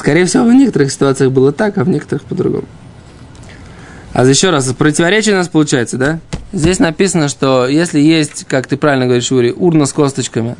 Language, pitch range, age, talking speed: Russian, 135-195 Hz, 20-39, 180 wpm